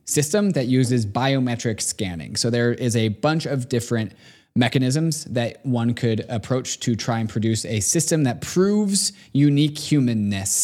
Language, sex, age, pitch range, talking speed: English, male, 20-39, 110-135 Hz, 150 wpm